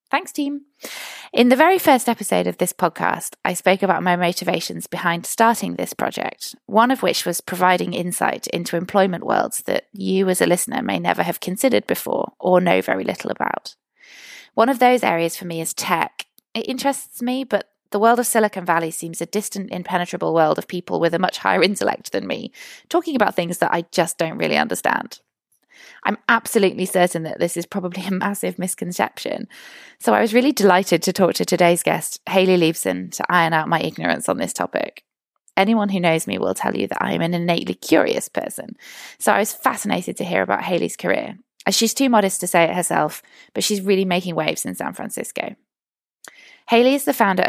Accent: British